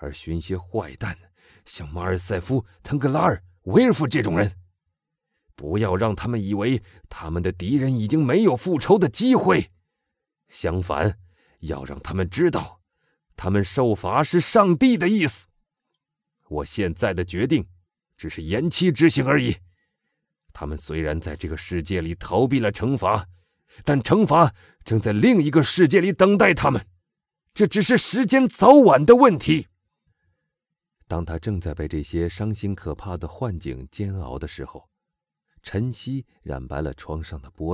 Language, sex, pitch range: Chinese, male, 80-130 Hz